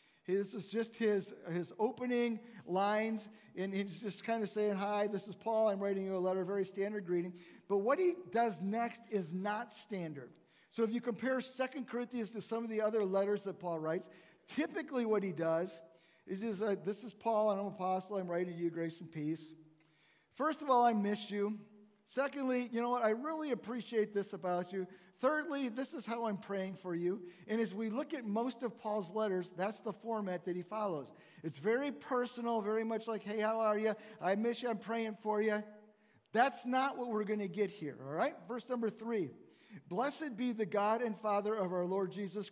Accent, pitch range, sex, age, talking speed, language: American, 190-230 Hz, male, 50-69, 205 wpm, English